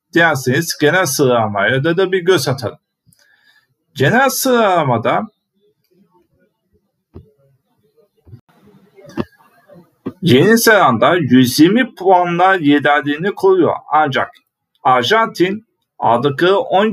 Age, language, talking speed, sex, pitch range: 50-69, Turkish, 65 wpm, male, 150-210 Hz